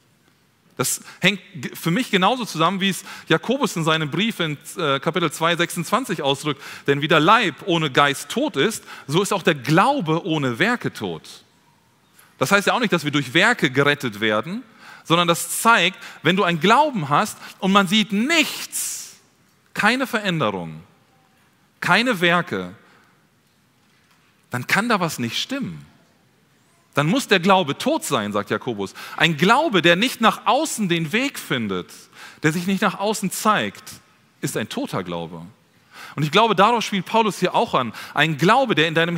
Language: German